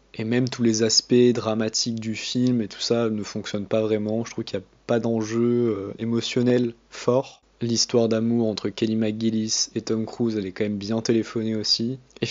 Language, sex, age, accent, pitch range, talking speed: French, male, 20-39, French, 110-125 Hz, 200 wpm